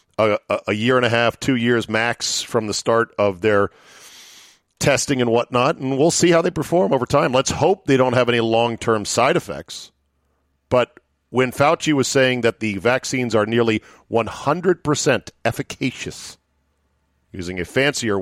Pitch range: 90-140 Hz